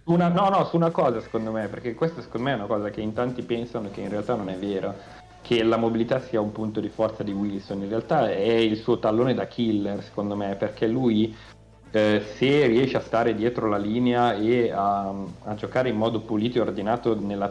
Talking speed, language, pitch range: 220 wpm, Italian, 100-115 Hz